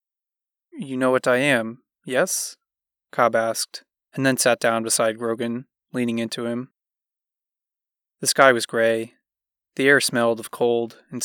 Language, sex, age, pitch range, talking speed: English, male, 20-39, 115-130 Hz, 145 wpm